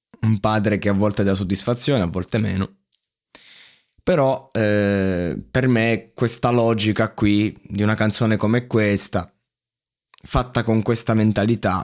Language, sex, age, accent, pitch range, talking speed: Italian, male, 20-39, native, 100-120 Hz, 130 wpm